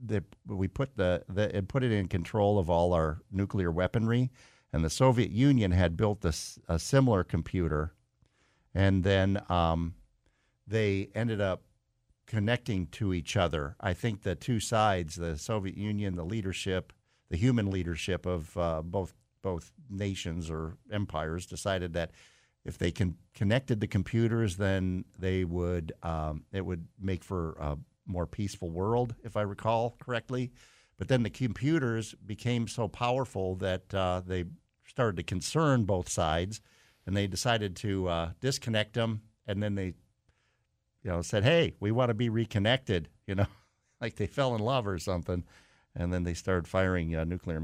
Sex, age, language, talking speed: male, 50-69, English, 165 wpm